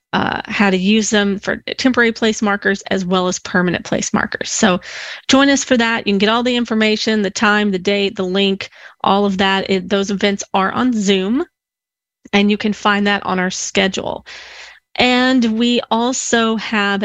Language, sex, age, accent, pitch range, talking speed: English, female, 30-49, American, 195-230 Hz, 185 wpm